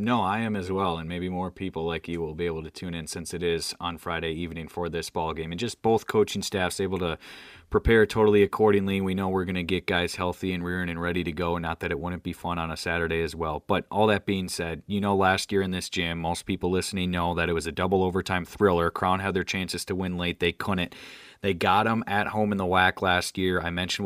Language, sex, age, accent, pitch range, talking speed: English, male, 30-49, American, 85-100 Hz, 260 wpm